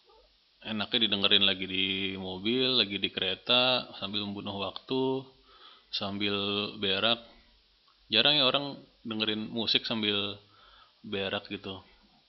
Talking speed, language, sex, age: 105 wpm, Indonesian, male, 20-39